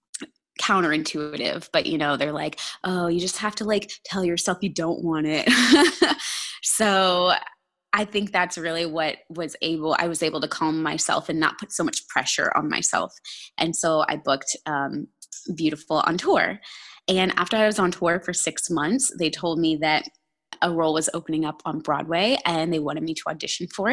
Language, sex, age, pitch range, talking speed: English, female, 20-39, 160-205 Hz, 190 wpm